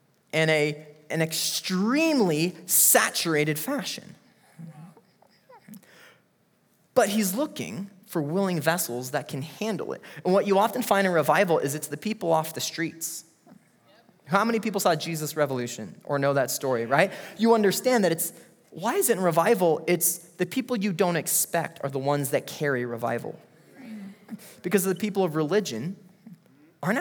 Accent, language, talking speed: American, English, 150 wpm